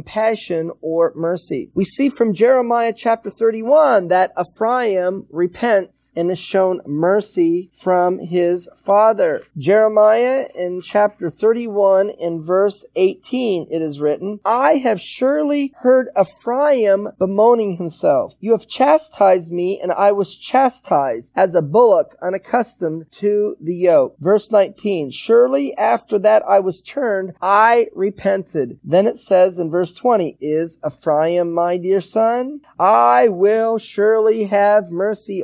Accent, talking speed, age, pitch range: American, 130 wpm, 40-59, 175-235 Hz